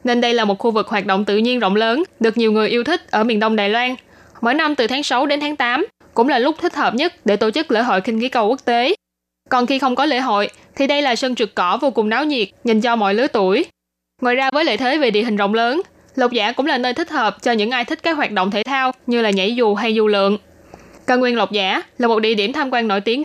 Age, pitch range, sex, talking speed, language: 10-29, 215-270 Hz, female, 290 wpm, Vietnamese